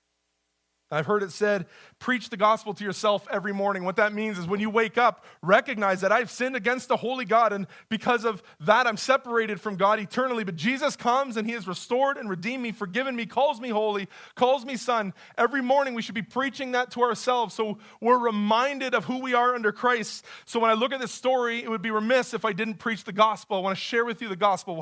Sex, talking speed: male, 235 wpm